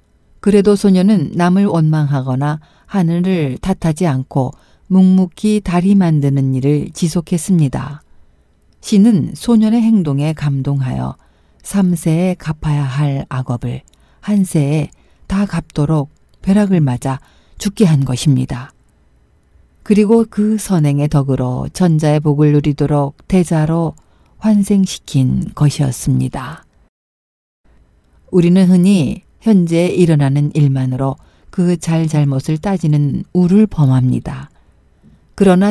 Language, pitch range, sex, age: Korean, 140-190 Hz, female, 40-59